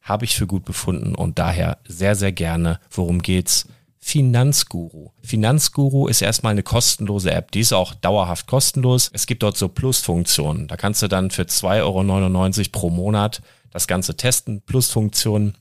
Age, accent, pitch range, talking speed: 40-59, German, 95-120 Hz, 160 wpm